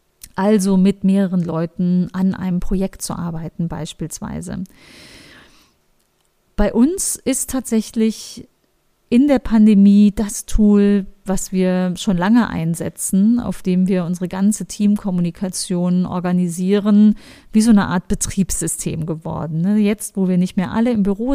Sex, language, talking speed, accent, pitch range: female, German, 125 wpm, German, 185-210 Hz